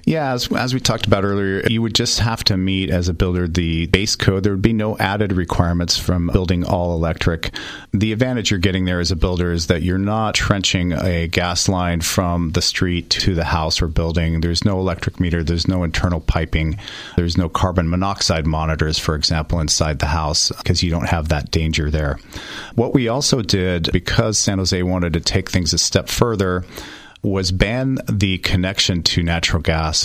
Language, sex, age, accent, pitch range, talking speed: English, male, 40-59, American, 85-100 Hz, 200 wpm